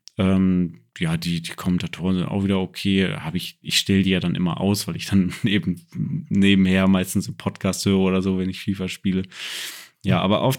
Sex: male